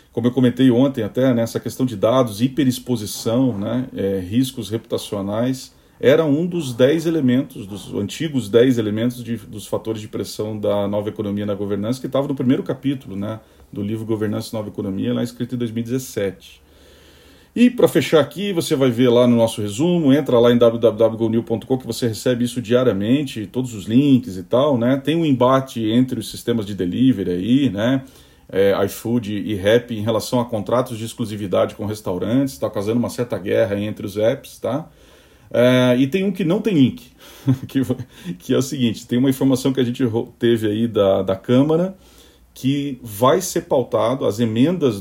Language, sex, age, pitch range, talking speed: Portuguese, male, 40-59, 110-130 Hz, 185 wpm